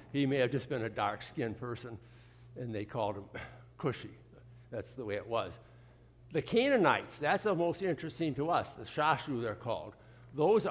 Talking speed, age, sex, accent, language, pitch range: 175 wpm, 60-79, male, American, English, 120-155 Hz